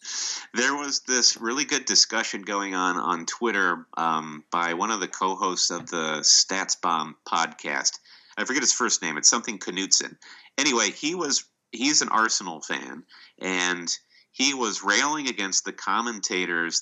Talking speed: 150 wpm